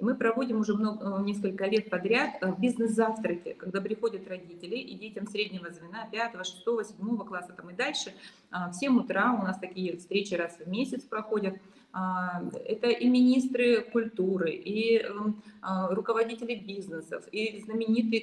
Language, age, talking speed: Russian, 20-39, 135 wpm